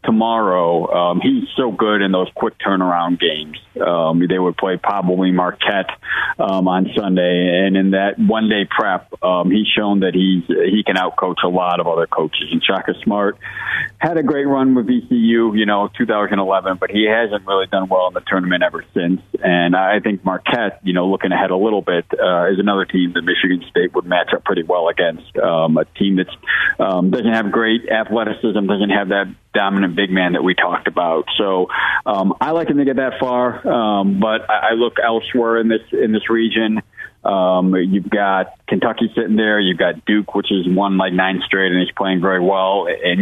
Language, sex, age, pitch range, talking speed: English, male, 40-59, 90-115 Hz, 200 wpm